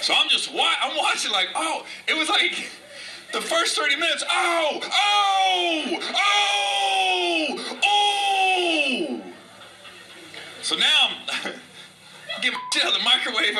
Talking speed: 120 wpm